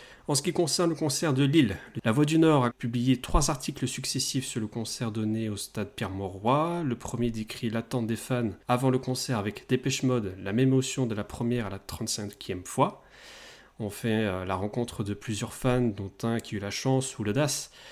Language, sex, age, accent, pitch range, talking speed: French, male, 40-59, French, 110-135 Hz, 205 wpm